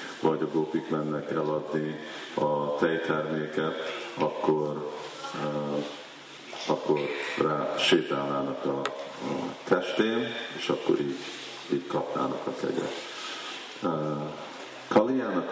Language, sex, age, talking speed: Hungarian, male, 50-69, 95 wpm